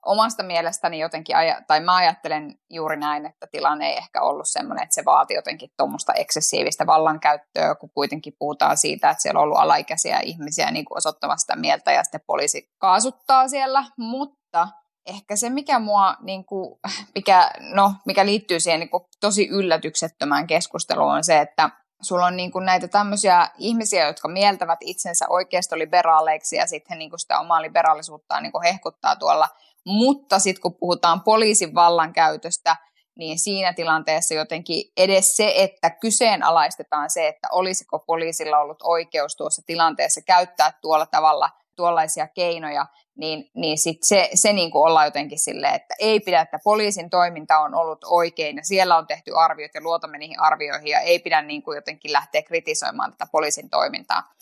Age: 20-39